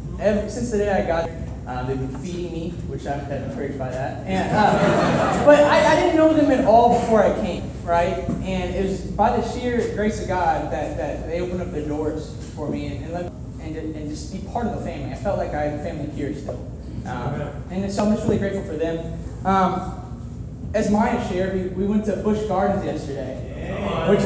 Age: 20-39